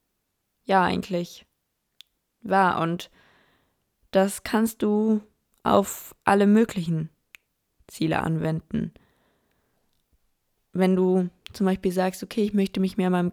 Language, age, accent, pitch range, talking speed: German, 20-39, German, 170-205 Hz, 105 wpm